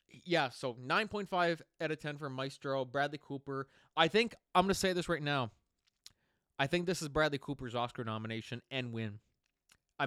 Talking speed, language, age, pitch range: 180 wpm, English, 20-39, 120-150 Hz